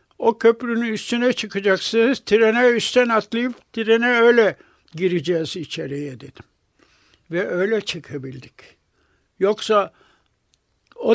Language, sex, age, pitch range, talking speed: Turkish, male, 60-79, 180-225 Hz, 90 wpm